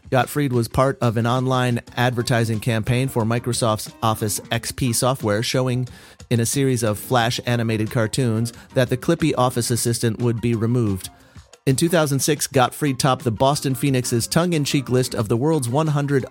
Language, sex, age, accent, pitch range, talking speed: English, male, 30-49, American, 110-140 Hz, 155 wpm